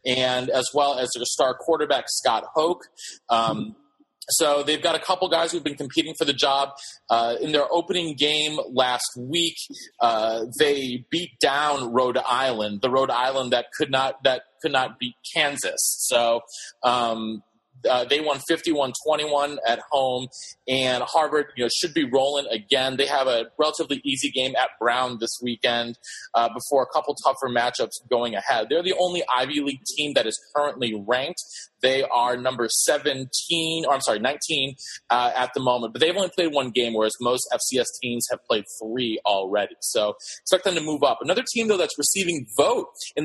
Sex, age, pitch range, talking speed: male, 30-49, 125-160 Hz, 180 wpm